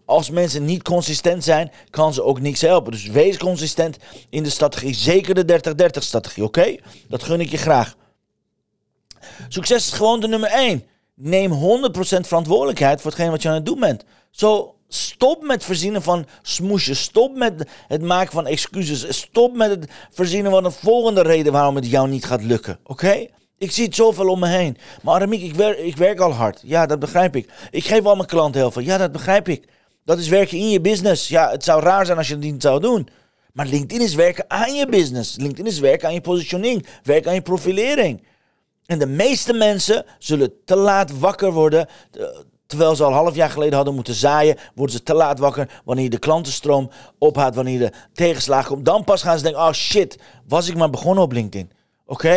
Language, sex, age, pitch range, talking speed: Dutch, male, 40-59, 140-190 Hz, 210 wpm